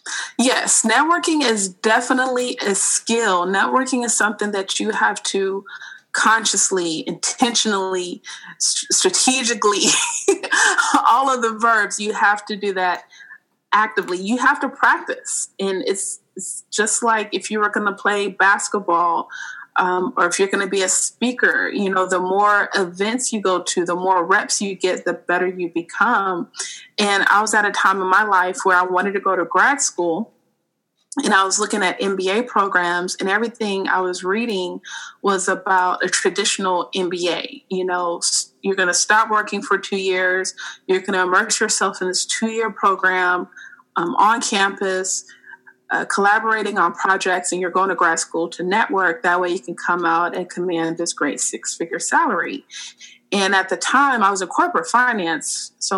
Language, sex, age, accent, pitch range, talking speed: English, female, 30-49, American, 180-225 Hz, 170 wpm